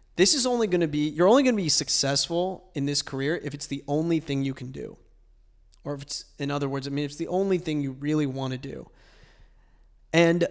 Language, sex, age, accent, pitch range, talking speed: English, male, 20-39, American, 140-165 Hz, 225 wpm